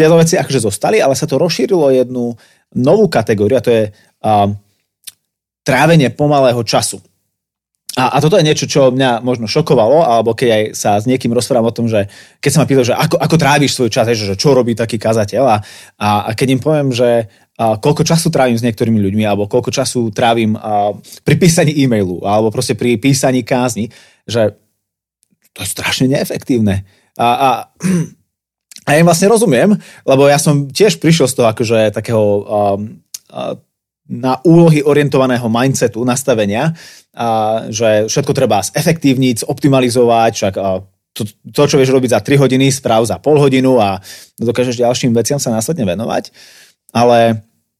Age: 30-49